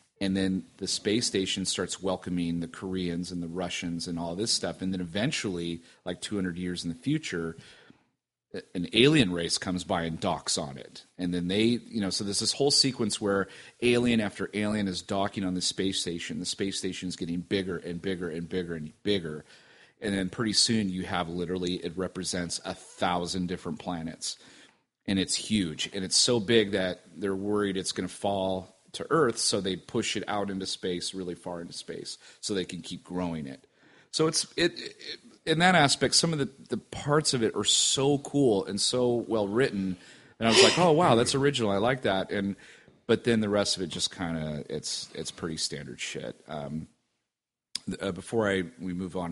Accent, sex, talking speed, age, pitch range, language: American, male, 200 wpm, 40-59, 85-105 Hz, English